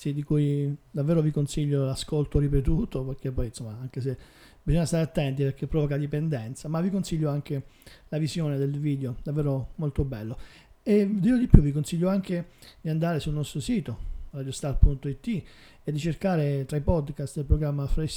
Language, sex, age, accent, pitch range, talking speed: Italian, male, 40-59, native, 135-160 Hz, 165 wpm